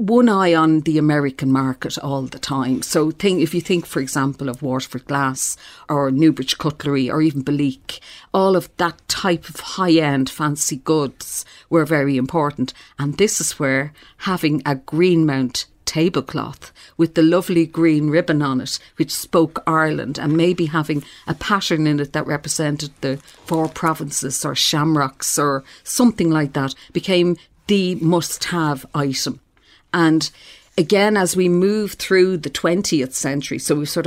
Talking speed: 160 wpm